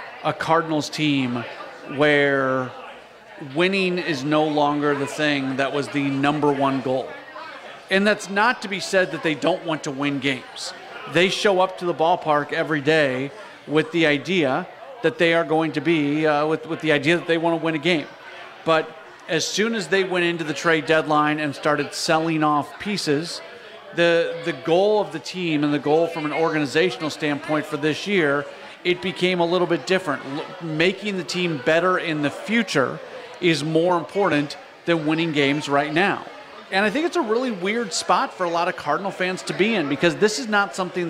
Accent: American